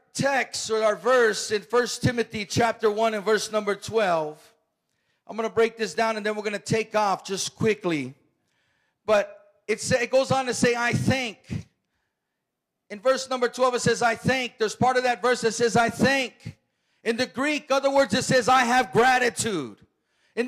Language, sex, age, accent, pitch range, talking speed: English, male, 40-59, American, 230-280 Hz, 190 wpm